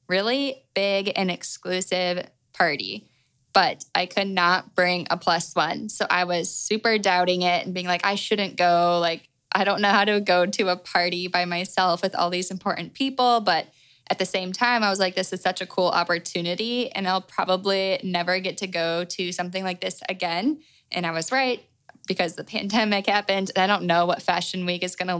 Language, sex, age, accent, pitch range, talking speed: English, female, 10-29, American, 175-200 Hz, 200 wpm